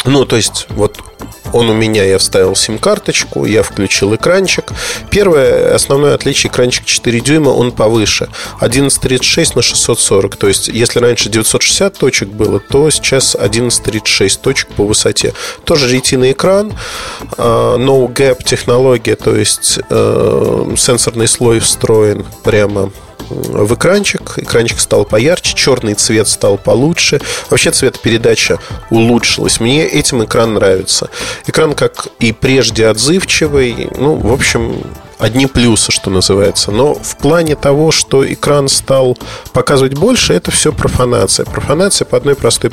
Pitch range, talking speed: 110-140 Hz, 130 wpm